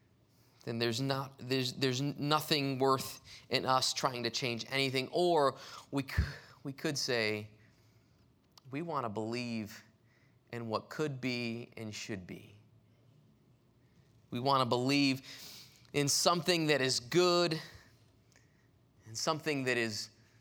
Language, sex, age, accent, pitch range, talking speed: English, male, 20-39, American, 115-145 Hz, 125 wpm